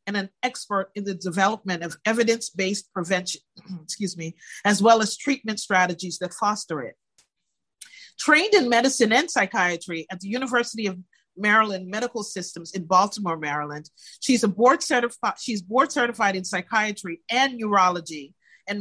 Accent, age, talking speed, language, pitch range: American, 40-59, 145 wpm, English, 185-245 Hz